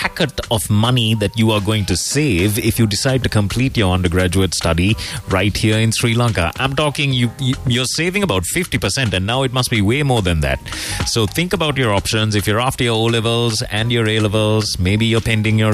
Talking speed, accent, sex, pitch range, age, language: 215 wpm, Indian, male, 95-120 Hz, 30-49, English